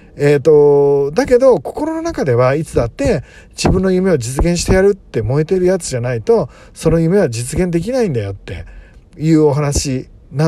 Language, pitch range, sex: Japanese, 120-190 Hz, male